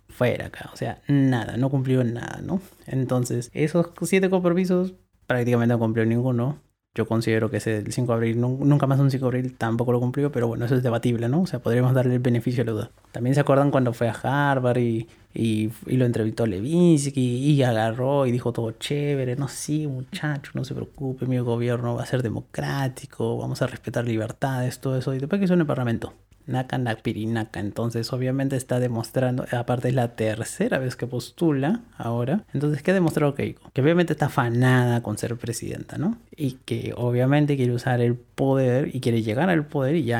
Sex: male